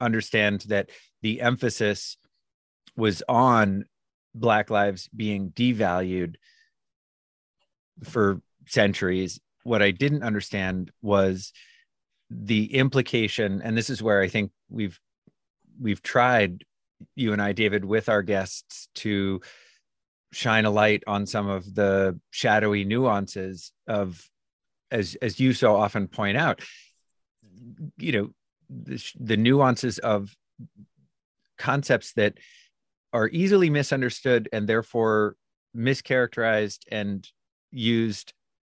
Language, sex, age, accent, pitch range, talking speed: English, male, 30-49, American, 100-120 Hz, 105 wpm